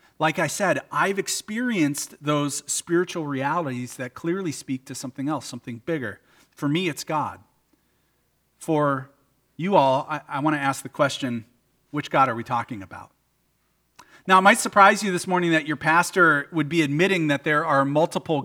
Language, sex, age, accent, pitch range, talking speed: English, male, 40-59, American, 130-180 Hz, 170 wpm